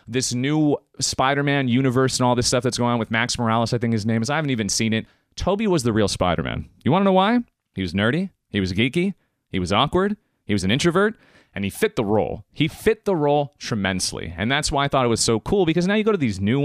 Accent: American